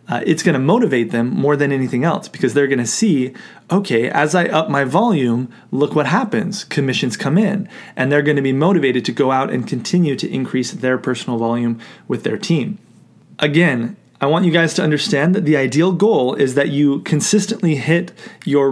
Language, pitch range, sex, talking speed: English, 130-170 Hz, male, 200 wpm